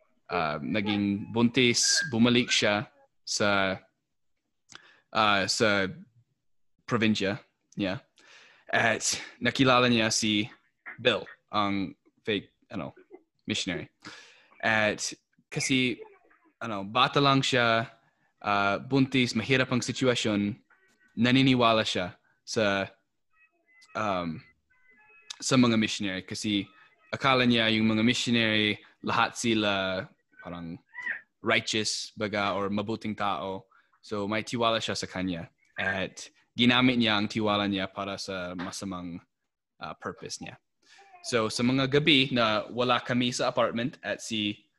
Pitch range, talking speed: 100-125 Hz, 105 wpm